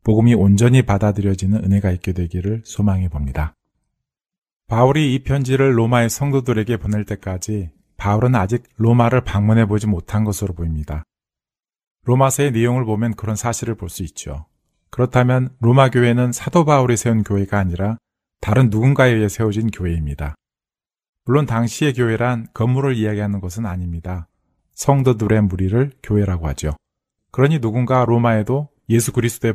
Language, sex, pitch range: Korean, male, 100-125 Hz